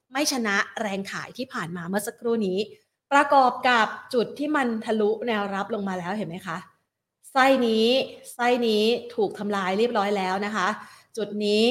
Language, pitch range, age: Thai, 195-240 Hz, 30-49